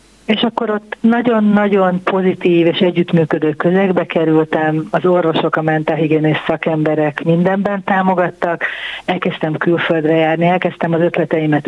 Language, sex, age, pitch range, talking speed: Hungarian, female, 60-79, 160-185 Hz, 115 wpm